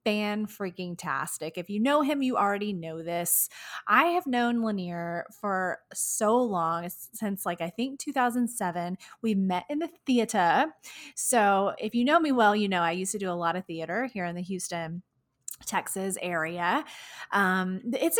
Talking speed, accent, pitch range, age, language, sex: 165 wpm, American, 180-230 Hz, 20-39, English, female